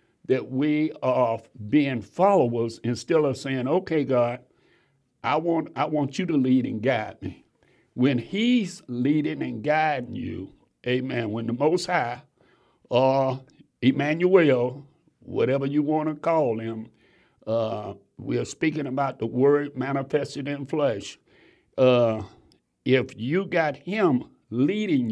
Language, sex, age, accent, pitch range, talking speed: English, male, 60-79, American, 125-160 Hz, 130 wpm